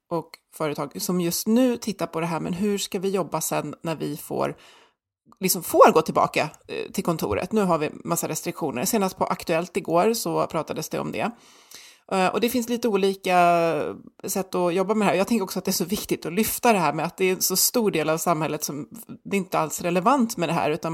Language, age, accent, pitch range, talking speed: Swedish, 30-49, native, 165-215 Hz, 230 wpm